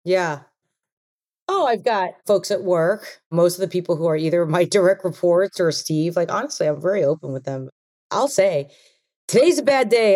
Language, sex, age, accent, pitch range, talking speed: English, female, 40-59, American, 145-190 Hz, 190 wpm